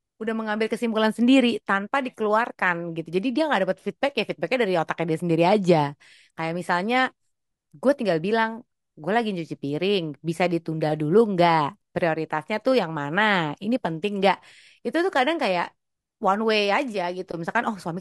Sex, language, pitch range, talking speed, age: female, Indonesian, 175-240 Hz, 165 wpm, 30-49